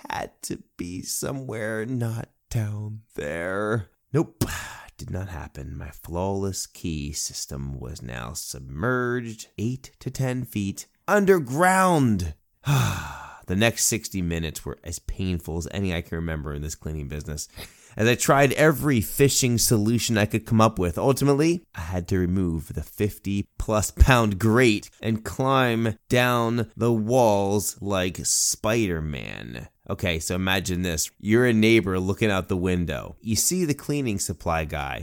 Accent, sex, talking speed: American, male, 145 wpm